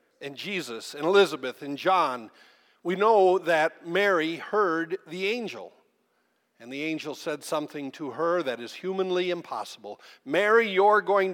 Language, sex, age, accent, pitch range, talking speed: English, male, 50-69, American, 150-195 Hz, 145 wpm